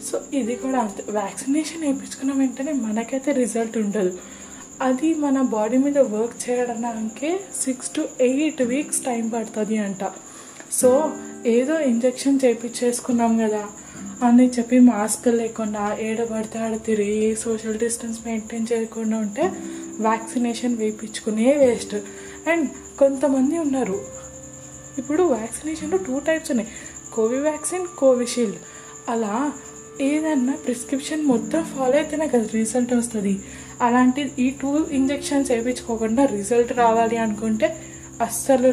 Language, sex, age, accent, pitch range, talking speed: Telugu, female, 20-39, native, 220-275 Hz, 110 wpm